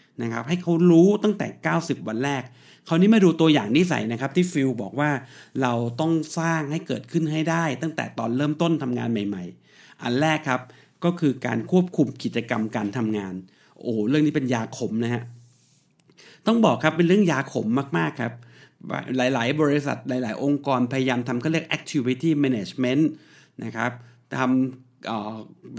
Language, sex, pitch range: Thai, male, 120-165 Hz